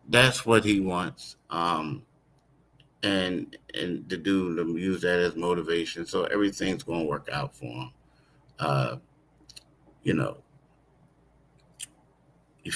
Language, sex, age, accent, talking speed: English, male, 50-69, American, 120 wpm